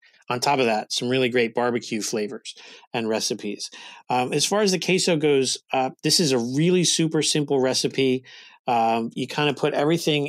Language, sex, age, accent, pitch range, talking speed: English, male, 40-59, American, 120-150 Hz, 185 wpm